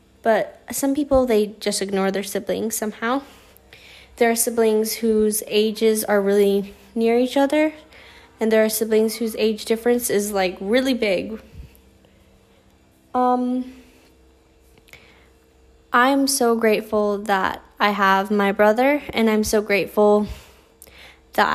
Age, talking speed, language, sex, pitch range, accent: 10-29, 125 wpm, English, female, 200-235 Hz, American